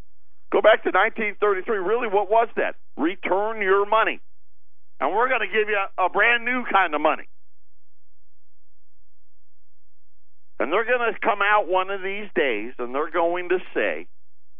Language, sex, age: English, male, 50-69